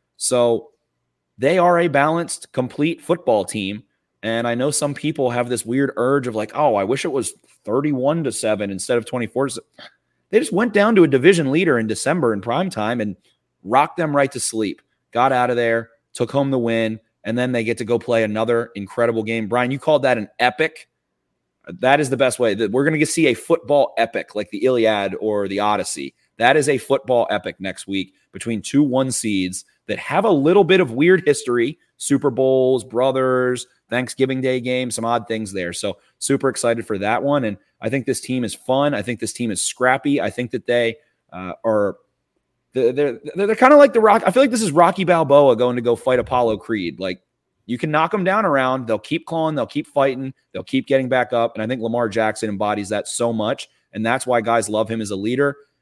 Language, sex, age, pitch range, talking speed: English, male, 30-49, 115-145 Hz, 220 wpm